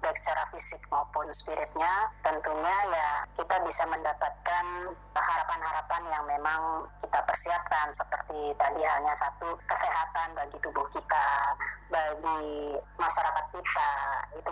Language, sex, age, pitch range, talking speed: Indonesian, male, 30-49, 150-175 Hz, 110 wpm